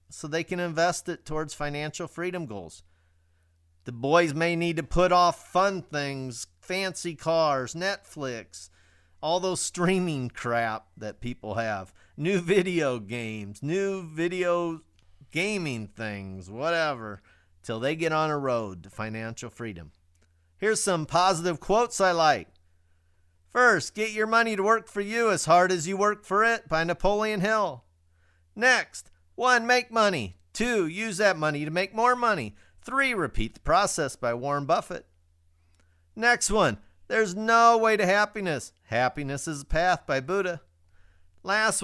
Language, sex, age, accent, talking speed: English, male, 40-59, American, 145 wpm